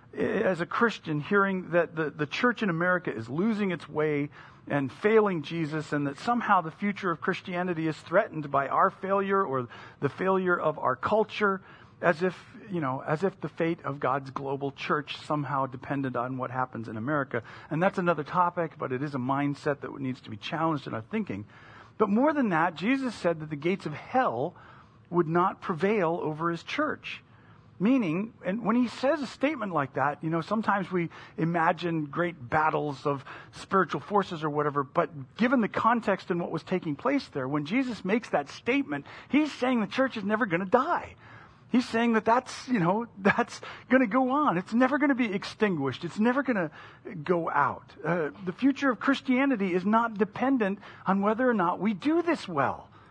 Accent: American